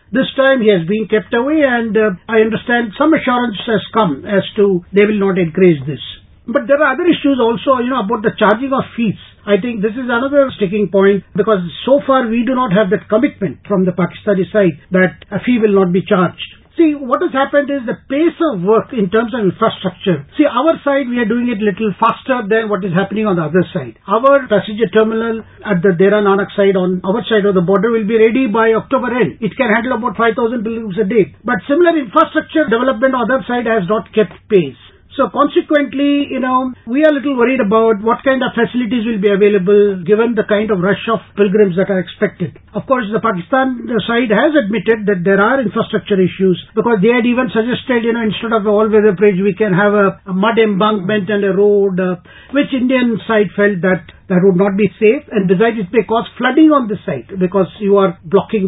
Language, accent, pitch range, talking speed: English, Indian, 200-255 Hz, 220 wpm